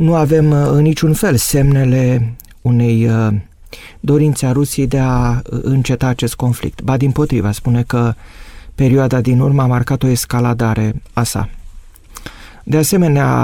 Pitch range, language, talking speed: 110-140 Hz, Romanian, 135 wpm